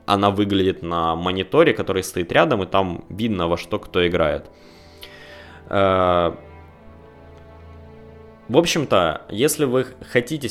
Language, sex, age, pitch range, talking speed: Russian, male, 20-39, 90-120 Hz, 120 wpm